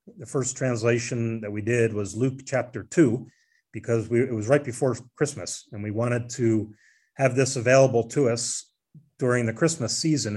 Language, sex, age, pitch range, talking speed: English, male, 40-59, 115-150 Hz, 175 wpm